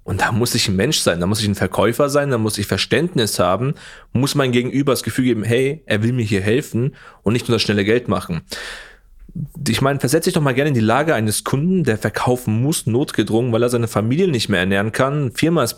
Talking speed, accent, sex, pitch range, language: 240 wpm, German, male, 110-140 Hz, German